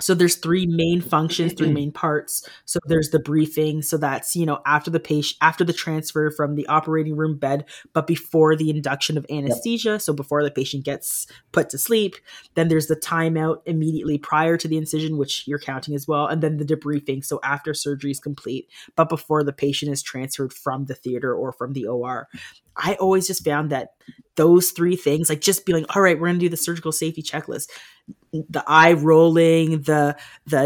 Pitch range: 145-165 Hz